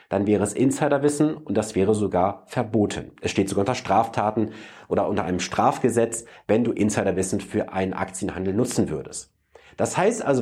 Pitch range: 105-145 Hz